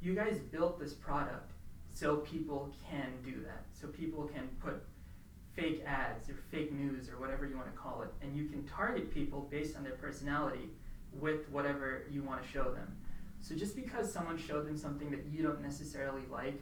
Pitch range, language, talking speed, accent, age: 135-155 Hz, English, 195 wpm, American, 20-39